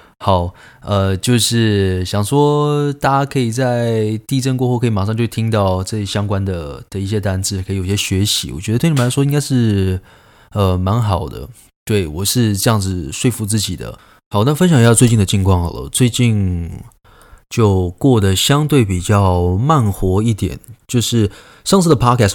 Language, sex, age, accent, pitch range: Chinese, male, 20-39, native, 95-125 Hz